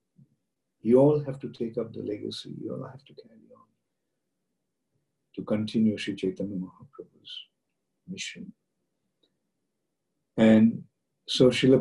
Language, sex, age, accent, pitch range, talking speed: English, male, 50-69, Indian, 110-145 Hz, 115 wpm